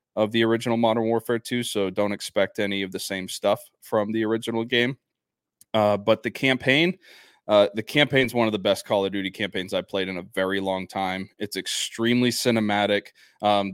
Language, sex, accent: English, male, American